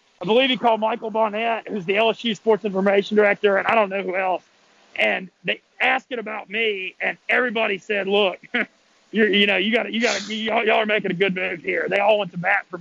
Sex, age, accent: male, 30-49, American